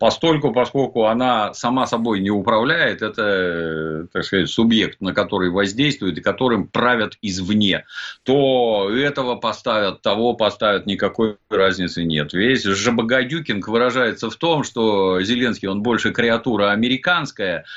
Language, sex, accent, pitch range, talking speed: Russian, male, native, 95-130 Hz, 130 wpm